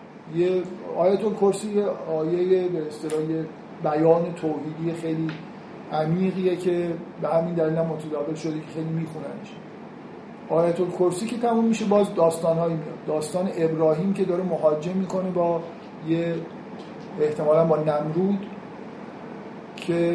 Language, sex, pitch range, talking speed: Persian, male, 165-195 Hz, 120 wpm